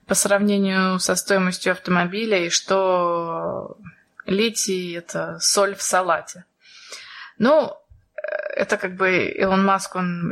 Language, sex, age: Russian, female, 20-39